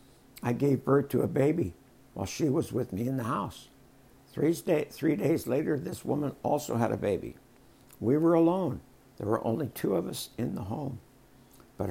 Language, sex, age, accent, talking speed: English, male, 60-79, American, 185 wpm